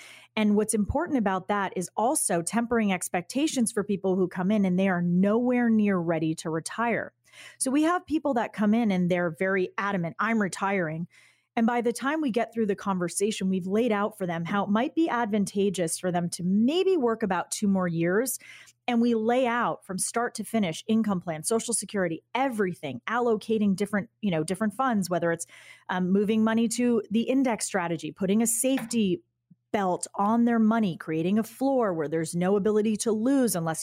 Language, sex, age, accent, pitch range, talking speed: English, female, 30-49, American, 185-235 Hz, 190 wpm